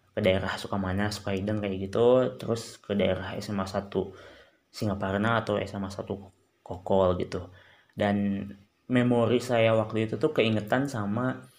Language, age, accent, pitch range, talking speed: Indonesian, 20-39, native, 95-115 Hz, 125 wpm